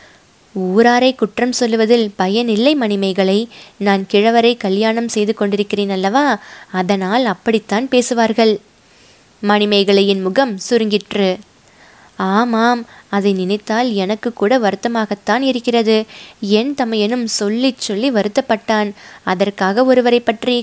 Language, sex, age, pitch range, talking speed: Tamil, female, 20-39, 205-255 Hz, 95 wpm